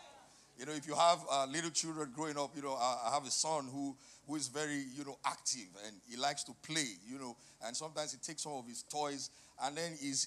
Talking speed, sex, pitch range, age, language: 245 wpm, male, 140-180 Hz, 50-69, English